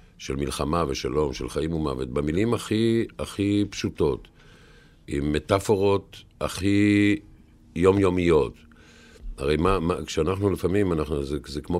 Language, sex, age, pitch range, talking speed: Hebrew, male, 50-69, 75-100 Hz, 115 wpm